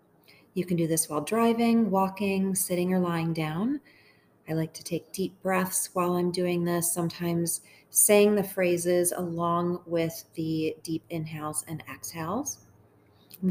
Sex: female